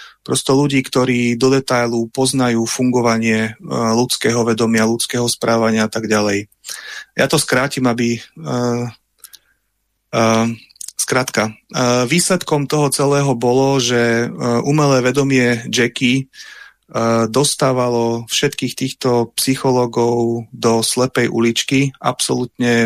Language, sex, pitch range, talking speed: Slovak, male, 115-130 Hz, 100 wpm